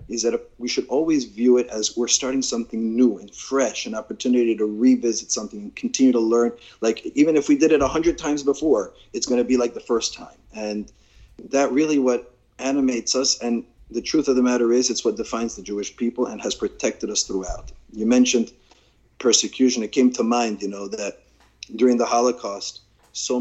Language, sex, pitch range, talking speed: English, male, 105-130 Hz, 200 wpm